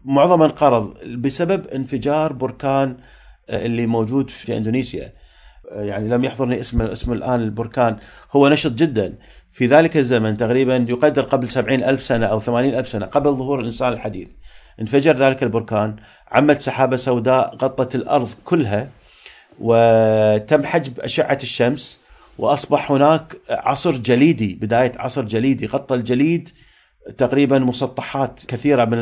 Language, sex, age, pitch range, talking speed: Arabic, male, 40-59, 115-140 Hz, 130 wpm